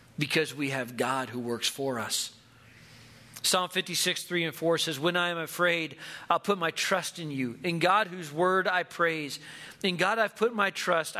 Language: English